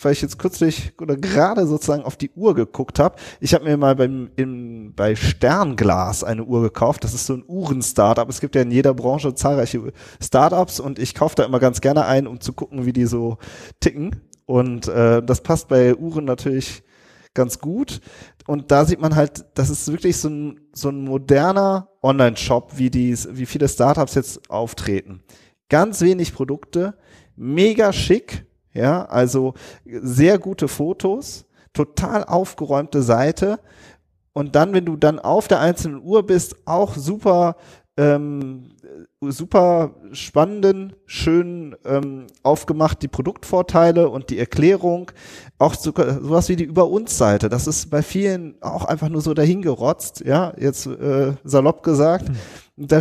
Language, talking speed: German, 160 wpm